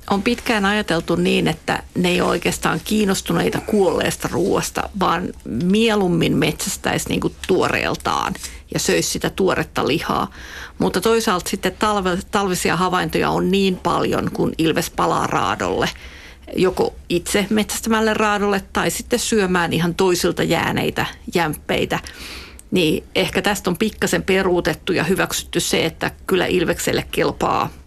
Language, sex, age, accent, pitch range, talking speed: Finnish, female, 50-69, native, 170-205 Hz, 125 wpm